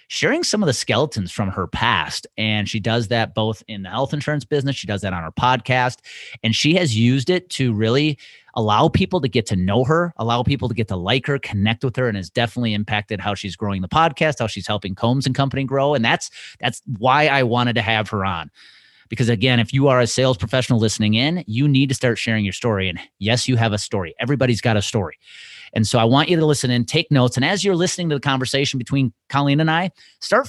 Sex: male